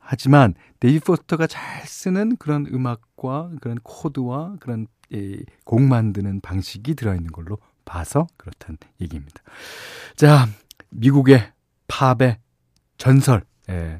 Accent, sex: native, male